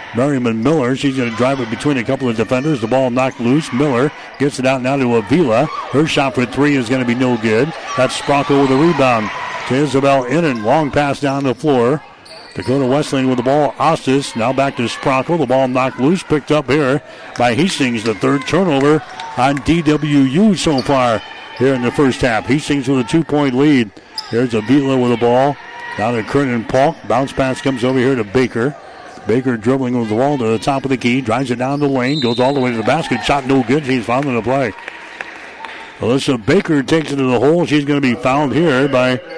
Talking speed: 220 wpm